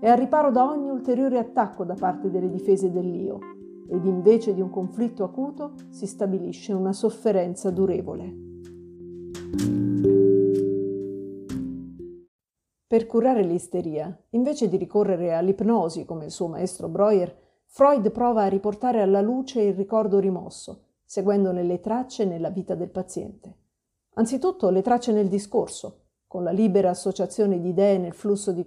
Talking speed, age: 135 wpm, 50-69